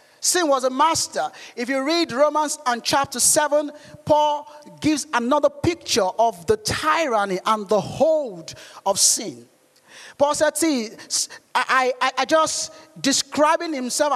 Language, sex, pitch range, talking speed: English, male, 240-310 Hz, 135 wpm